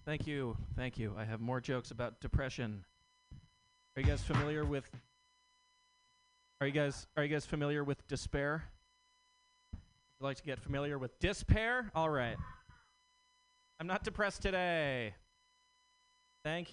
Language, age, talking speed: English, 30-49, 135 wpm